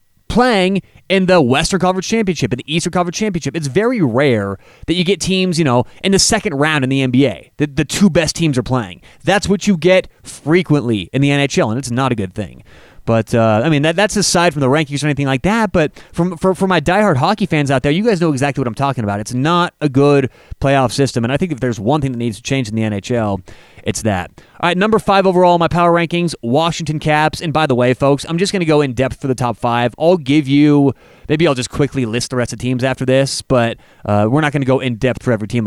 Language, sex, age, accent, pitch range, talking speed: English, male, 30-49, American, 125-180 Hz, 255 wpm